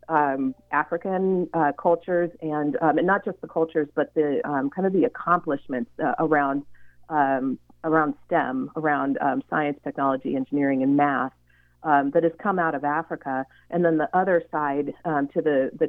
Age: 40-59